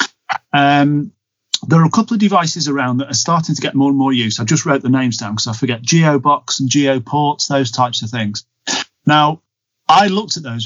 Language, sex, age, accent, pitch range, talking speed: English, male, 40-59, British, 120-145 Hz, 215 wpm